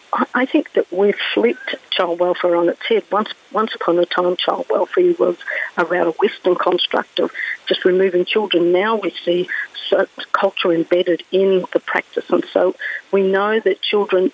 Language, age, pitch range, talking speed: English, 50-69, 175-205 Hz, 165 wpm